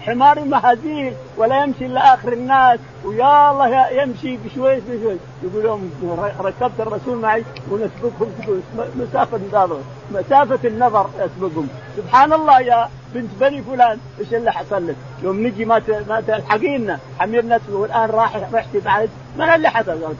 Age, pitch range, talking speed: 50-69, 175-245 Hz, 135 wpm